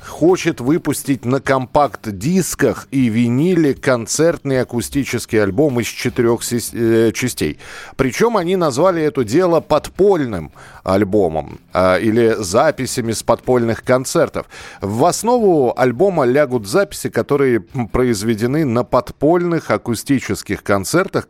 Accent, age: native, 40-59